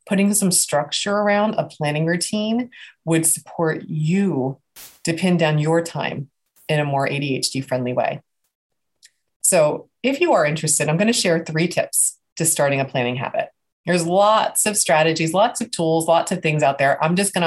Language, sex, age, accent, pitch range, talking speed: English, female, 30-49, American, 145-190 Hz, 180 wpm